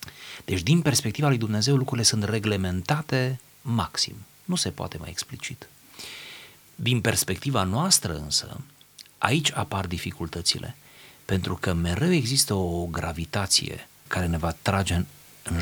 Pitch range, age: 85-125 Hz, 30-49